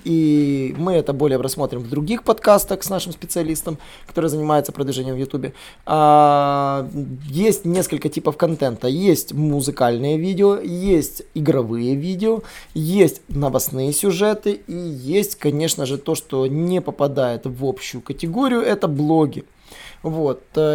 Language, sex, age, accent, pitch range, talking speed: Russian, male, 20-39, native, 140-185 Hz, 125 wpm